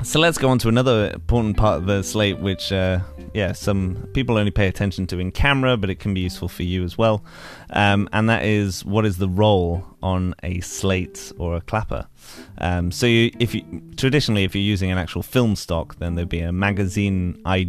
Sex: male